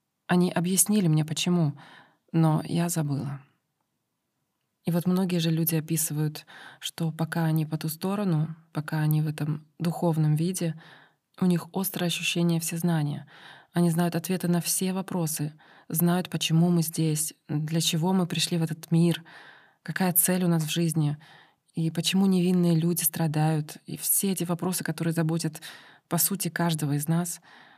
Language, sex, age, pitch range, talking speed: Russian, female, 20-39, 155-175 Hz, 150 wpm